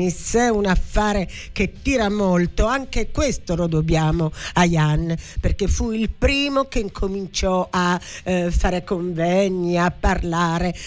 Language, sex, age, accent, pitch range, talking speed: Italian, female, 50-69, native, 160-195 Hz, 125 wpm